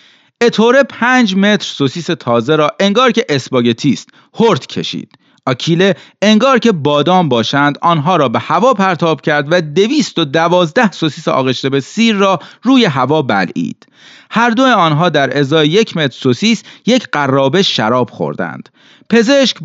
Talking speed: 145 wpm